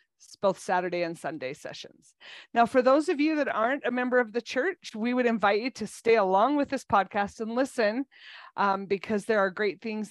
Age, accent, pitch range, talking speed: 30-49, American, 195-245 Hz, 210 wpm